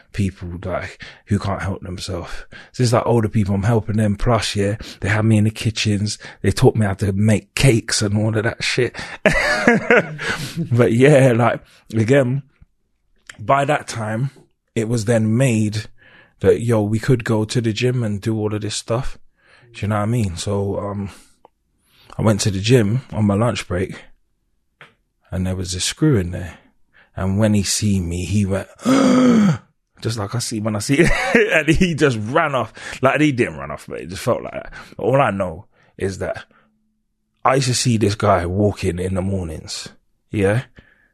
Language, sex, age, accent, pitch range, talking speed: English, male, 20-39, British, 95-120 Hz, 190 wpm